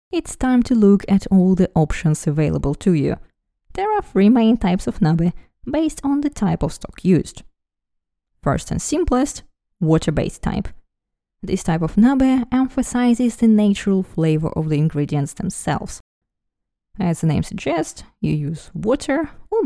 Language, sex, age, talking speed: English, female, 20-39, 155 wpm